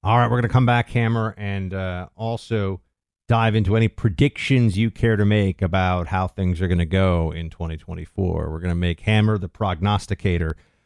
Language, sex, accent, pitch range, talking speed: English, male, American, 95-140 Hz, 195 wpm